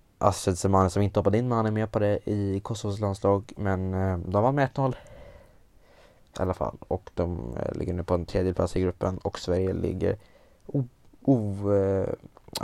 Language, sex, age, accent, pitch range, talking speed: Swedish, male, 20-39, Norwegian, 100-120 Hz, 175 wpm